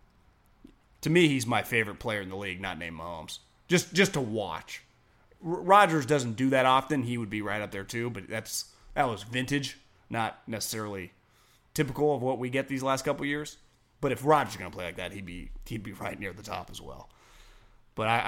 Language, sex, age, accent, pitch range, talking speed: English, male, 30-49, American, 110-145 Hz, 215 wpm